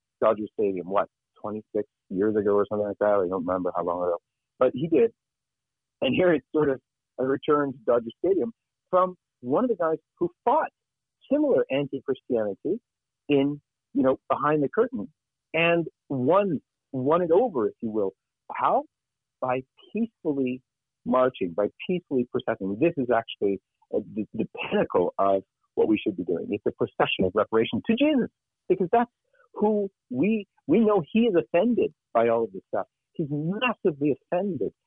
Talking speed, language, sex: 165 wpm, English, male